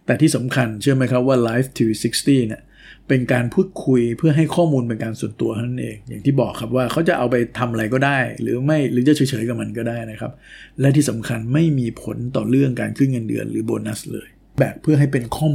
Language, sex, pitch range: Thai, male, 110-135 Hz